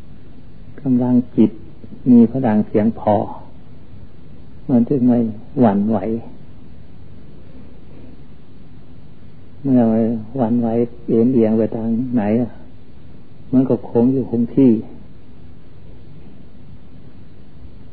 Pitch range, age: 110-125 Hz, 60-79